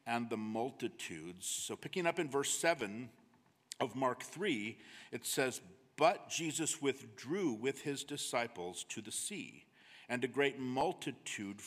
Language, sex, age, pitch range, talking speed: English, male, 50-69, 110-145 Hz, 140 wpm